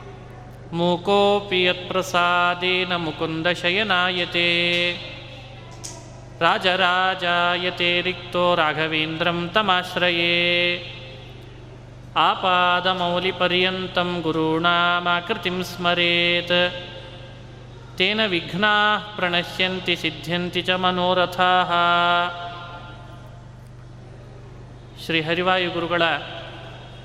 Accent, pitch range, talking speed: native, 125-180 Hz, 30 wpm